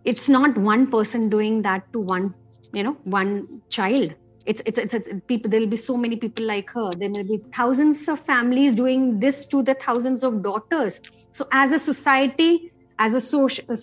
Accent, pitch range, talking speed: native, 225-295 Hz, 195 wpm